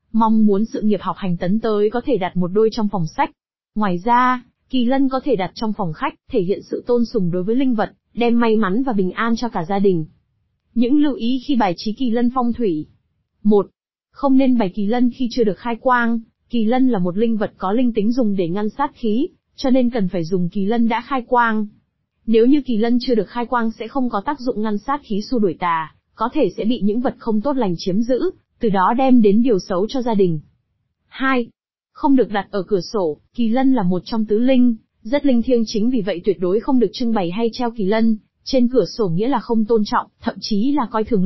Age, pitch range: 20-39, 200-245 Hz